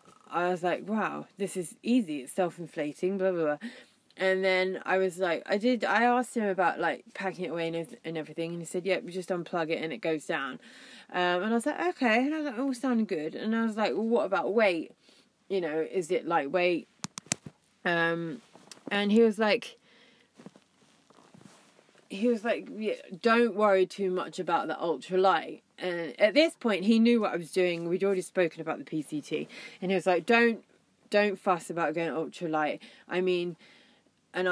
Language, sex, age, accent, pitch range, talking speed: English, female, 20-39, British, 175-230 Hz, 200 wpm